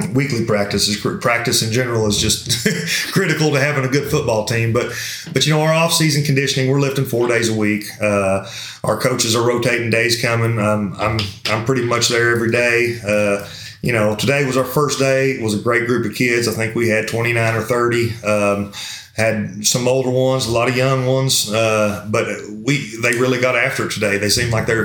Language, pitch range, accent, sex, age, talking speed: English, 110-130 Hz, American, male, 30-49, 215 wpm